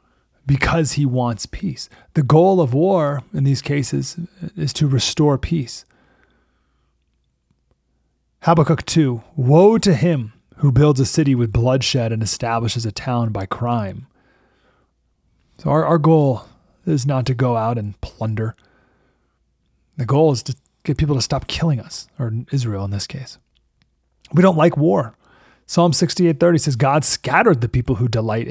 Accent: American